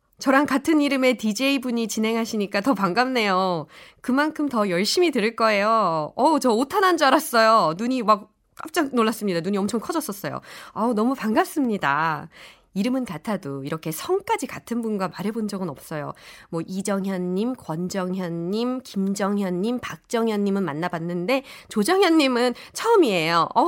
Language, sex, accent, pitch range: Korean, female, native, 180-270 Hz